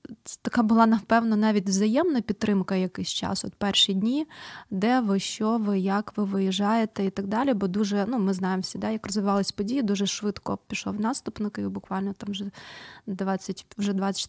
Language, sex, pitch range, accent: Ukrainian, female, 195-225 Hz, native